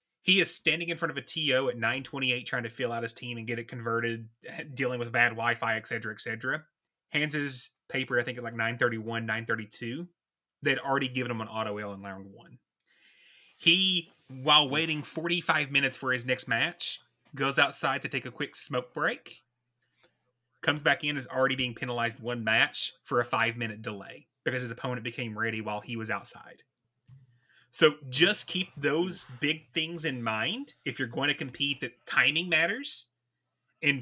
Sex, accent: male, American